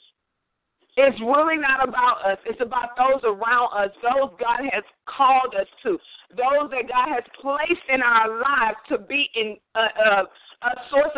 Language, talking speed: English, 160 wpm